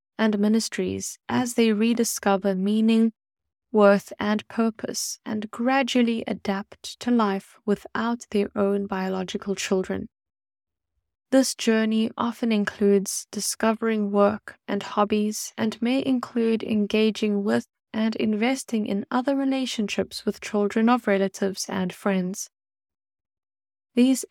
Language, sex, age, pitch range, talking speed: English, female, 10-29, 195-230 Hz, 110 wpm